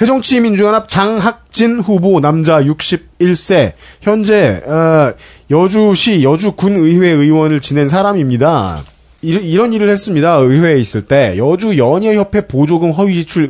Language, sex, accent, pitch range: Korean, male, native, 145-195 Hz